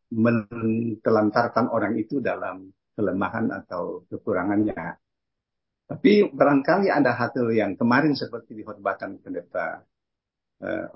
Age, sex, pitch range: 50-69, male, 110-150 Hz